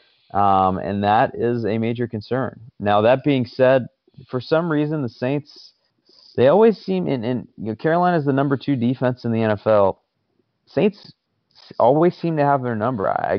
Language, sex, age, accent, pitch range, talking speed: English, male, 20-39, American, 95-120 Hz, 180 wpm